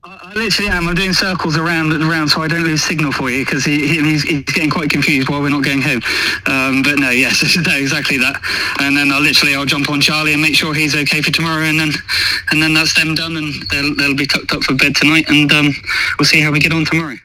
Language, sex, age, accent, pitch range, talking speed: English, male, 20-39, British, 120-150 Hz, 265 wpm